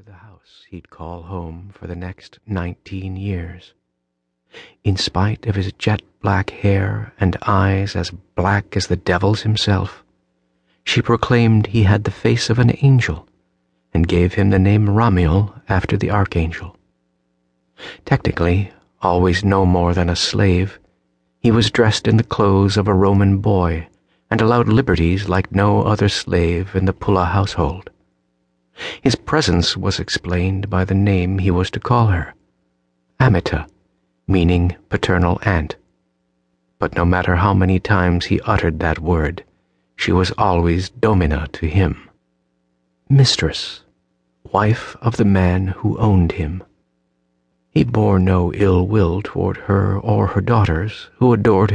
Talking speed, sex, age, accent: 140 wpm, male, 50-69, American